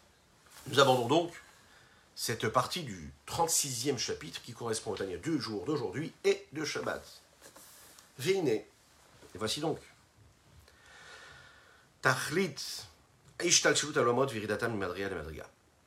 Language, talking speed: French, 85 wpm